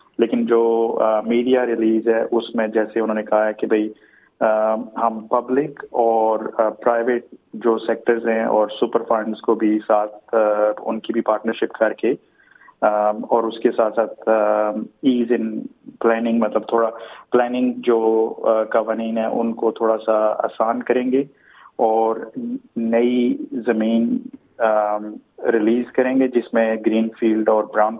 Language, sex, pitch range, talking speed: Urdu, male, 110-120 Hz, 140 wpm